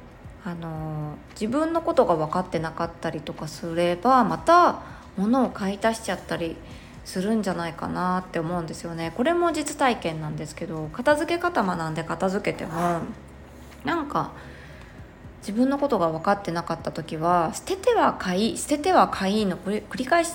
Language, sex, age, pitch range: Japanese, female, 20-39, 170-275 Hz